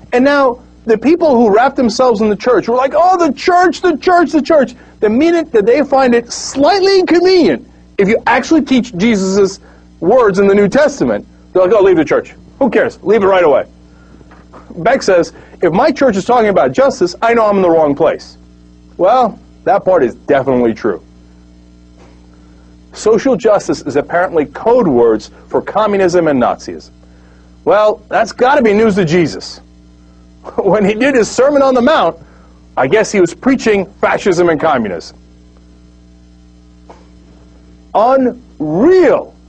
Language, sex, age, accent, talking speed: English, male, 40-59, American, 160 wpm